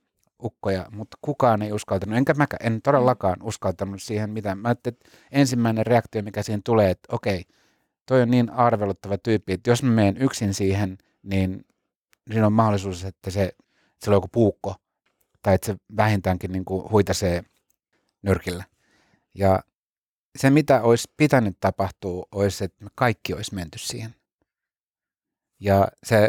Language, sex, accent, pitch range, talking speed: Finnish, male, native, 95-110 Hz, 145 wpm